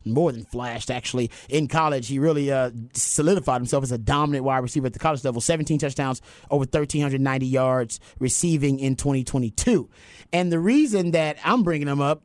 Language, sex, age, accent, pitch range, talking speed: English, male, 30-49, American, 140-175 Hz, 175 wpm